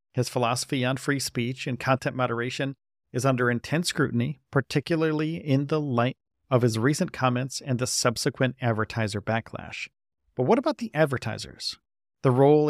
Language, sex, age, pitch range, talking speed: English, male, 40-59, 120-145 Hz, 150 wpm